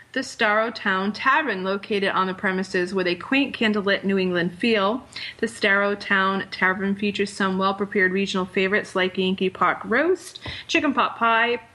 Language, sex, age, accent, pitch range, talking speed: English, female, 30-49, American, 195-235 Hz, 150 wpm